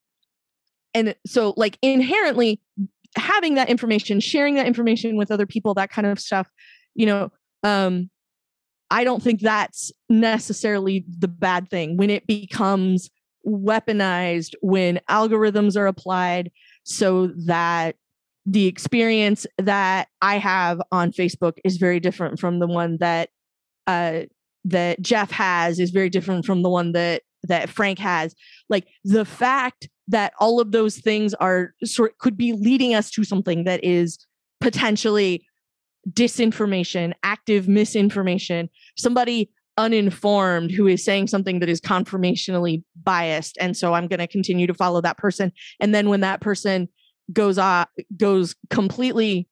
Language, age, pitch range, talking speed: English, 20-39, 180-220 Hz, 140 wpm